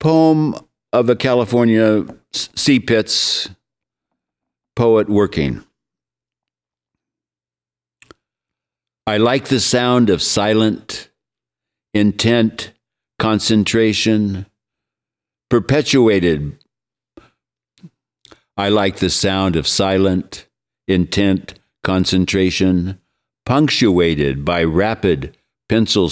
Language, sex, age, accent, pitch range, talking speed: English, male, 60-79, American, 75-110 Hz, 65 wpm